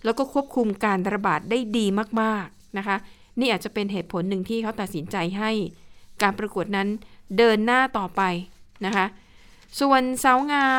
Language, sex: Thai, female